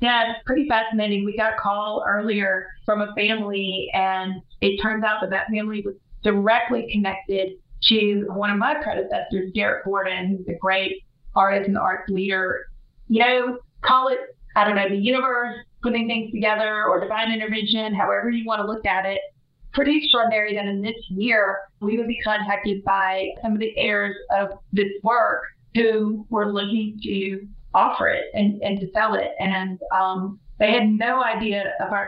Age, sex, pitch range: 30-49, female, 195-225 Hz